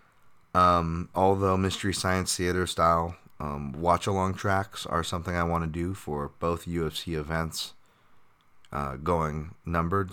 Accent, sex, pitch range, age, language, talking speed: American, male, 75-90 Hz, 30-49, English, 130 wpm